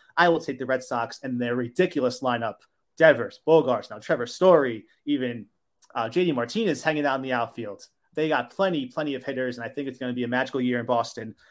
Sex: male